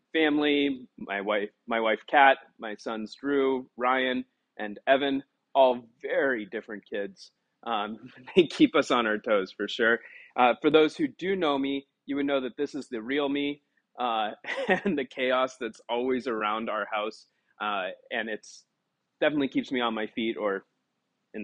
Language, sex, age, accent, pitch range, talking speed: English, male, 30-49, American, 115-160 Hz, 170 wpm